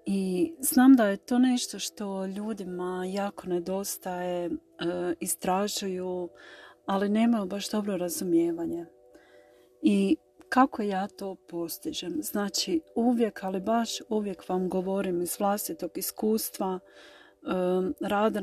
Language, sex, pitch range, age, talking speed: Croatian, female, 175-210 Hz, 40-59, 105 wpm